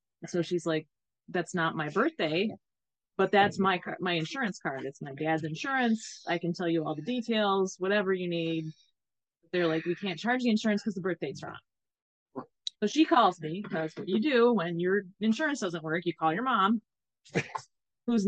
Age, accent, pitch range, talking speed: 20-39, American, 160-205 Hz, 185 wpm